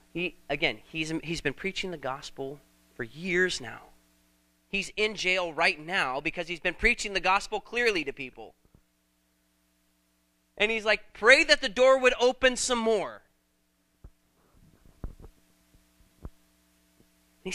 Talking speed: 125 wpm